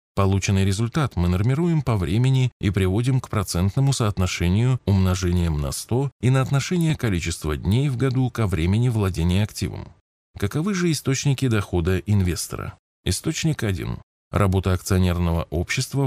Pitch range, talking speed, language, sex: 90-125 Hz, 130 wpm, Russian, male